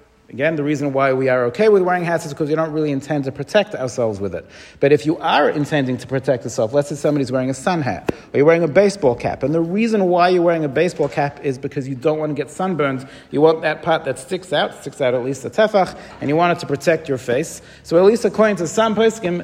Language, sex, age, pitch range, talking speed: English, male, 40-59, 140-175 Hz, 270 wpm